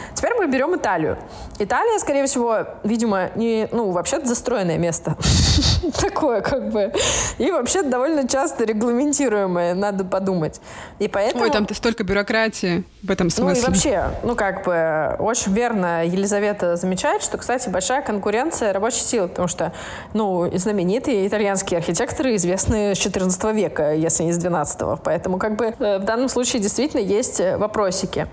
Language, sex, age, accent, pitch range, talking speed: Russian, female, 20-39, native, 190-250 Hz, 150 wpm